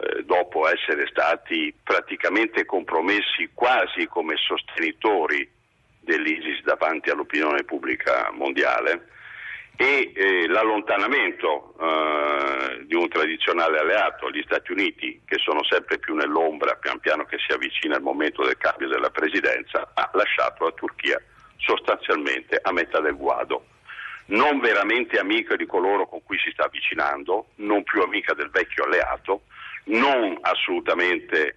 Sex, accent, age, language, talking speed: male, native, 50-69, Italian, 125 wpm